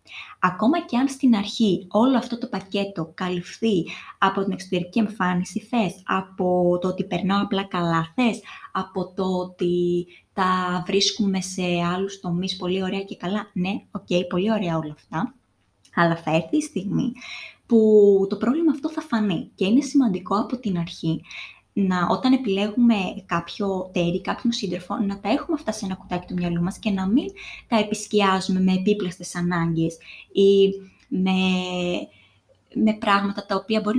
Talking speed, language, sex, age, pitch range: 155 wpm, Greek, female, 20-39, 180-225 Hz